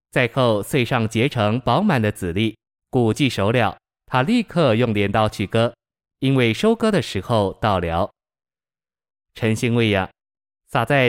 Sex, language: male, Chinese